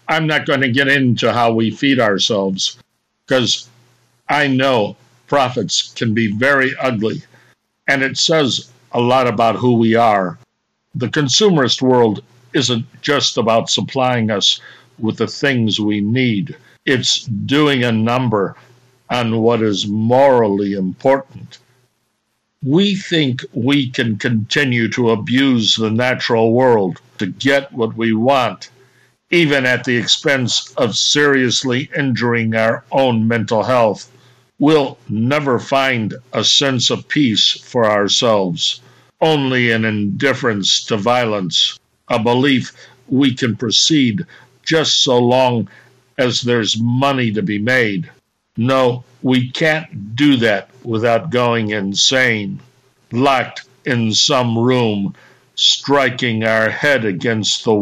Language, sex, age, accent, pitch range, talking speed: English, male, 60-79, American, 115-130 Hz, 125 wpm